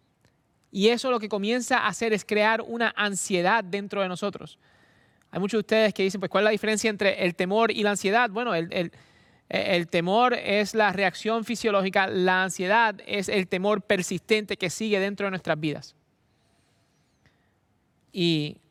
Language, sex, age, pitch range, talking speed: English, male, 30-49, 175-205 Hz, 165 wpm